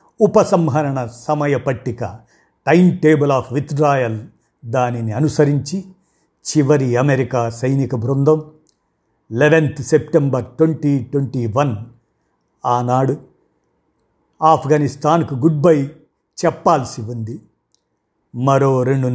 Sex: male